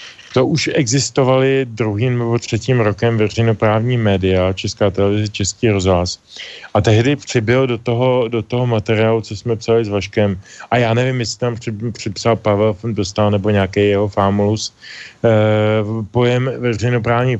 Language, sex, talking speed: Slovak, male, 140 wpm